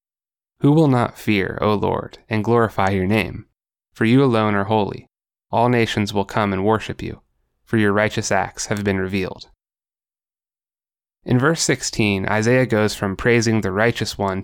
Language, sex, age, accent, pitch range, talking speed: English, male, 20-39, American, 100-115 Hz, 160 wpm